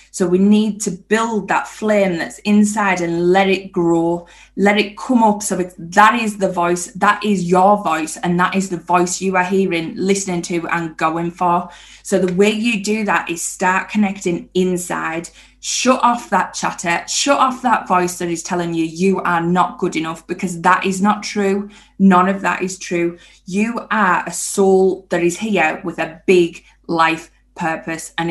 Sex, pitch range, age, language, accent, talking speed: female, 175-215 Hz, 20-39, English, British, 190 wpm